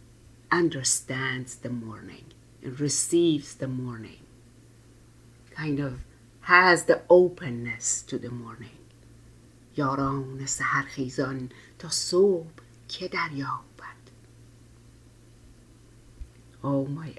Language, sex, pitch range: English, female, 120-145 Hz